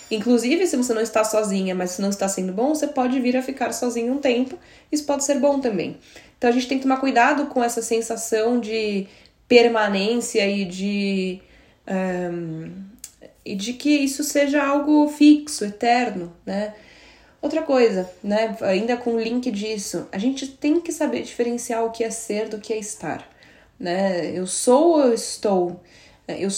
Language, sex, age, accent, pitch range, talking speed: Portuguese, female, 10-29, Brazilian, 195-240 Hz, 170 wpm